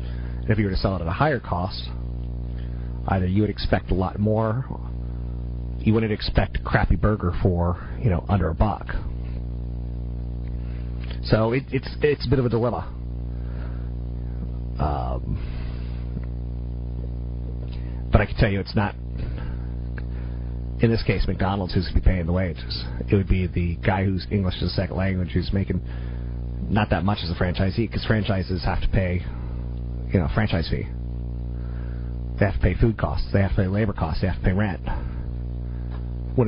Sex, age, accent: male, 30-49, American